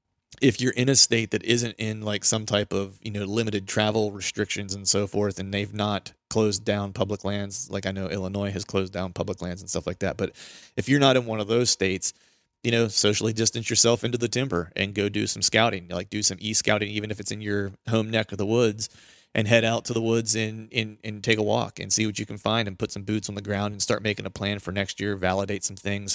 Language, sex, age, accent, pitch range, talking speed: English, male, 30-49, American, 100-110 Hz, 255 wpm